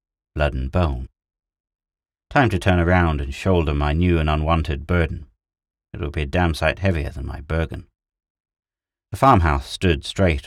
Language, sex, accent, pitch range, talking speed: English, male, British, 75-90 Hz, 160 wpm